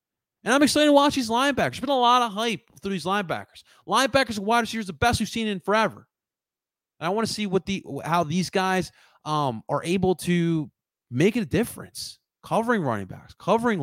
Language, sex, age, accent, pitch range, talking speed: English, male, 30-49, American, 120-195 Hz, 200 wpm